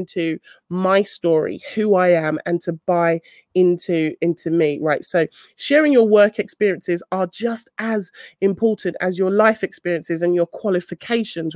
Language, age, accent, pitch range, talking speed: English, 30-49, British, 175-245 Hz, 150 wpm